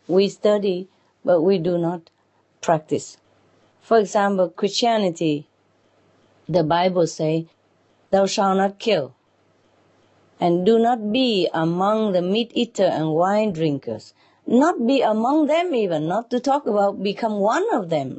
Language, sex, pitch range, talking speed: English, female, 135-210 Hz, 130 wpm